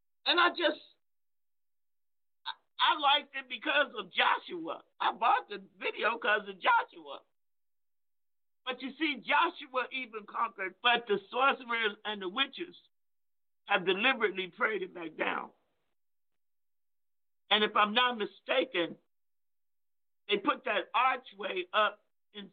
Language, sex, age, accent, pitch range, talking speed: English, male, 50-69, American, 185-255 Hz, 120 wpm